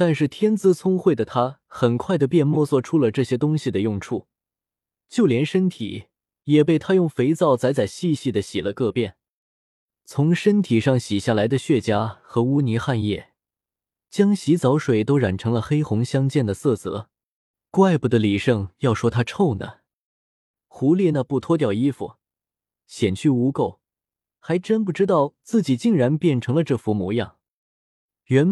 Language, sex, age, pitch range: Chinese, male, 20-39, 110-165 Hz